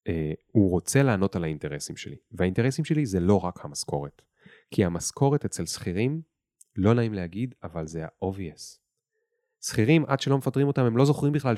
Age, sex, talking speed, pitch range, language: 30-49, male, 165 wpm, 80-125 Hz, Hebrew